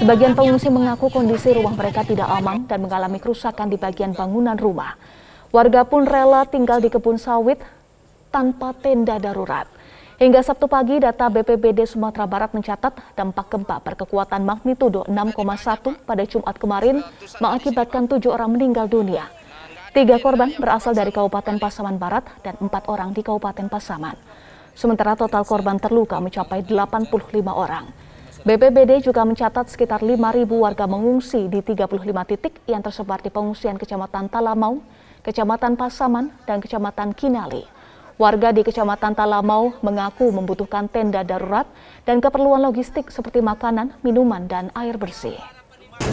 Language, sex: Indonesian, female